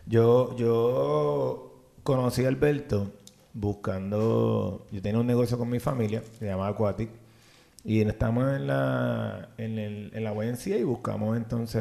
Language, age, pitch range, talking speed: Spanish, 30-49, 110-130 Hz, 125 wpm